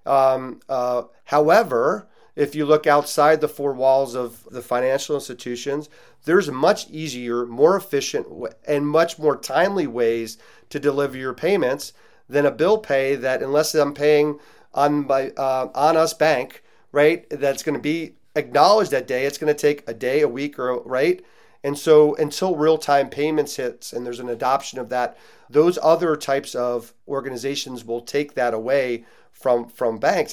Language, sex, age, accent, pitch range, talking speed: English, male, 40-59, American, 125-155 Hz, 170 wpm